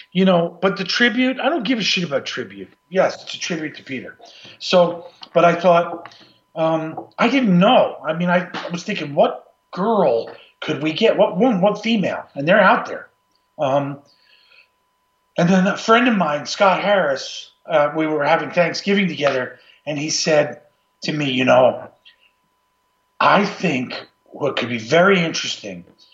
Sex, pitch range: male, 140-195 Hz